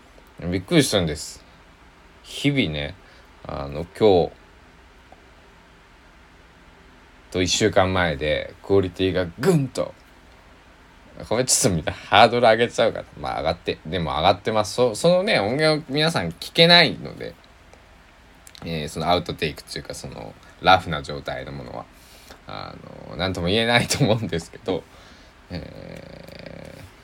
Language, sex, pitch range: Japanese, male, 80-115 Hz